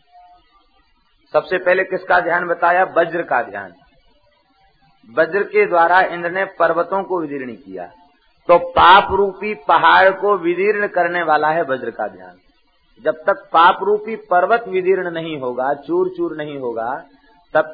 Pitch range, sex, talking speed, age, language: 150-195 Hz, male, 135 wpm, 50-69, Hindi